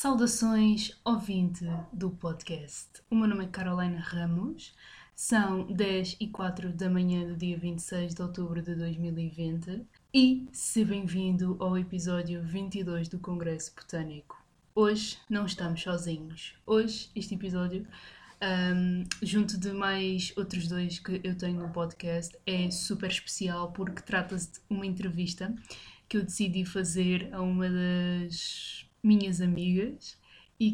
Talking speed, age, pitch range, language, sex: 135 wpm, 20-39, 180-215 Hz, Portuguese, female